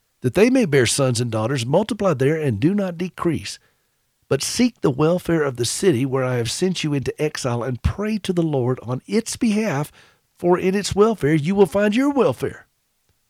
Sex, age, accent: male, 50-69, American